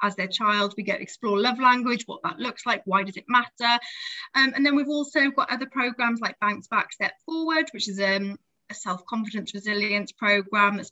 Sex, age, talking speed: female, 20-39, 205 wpm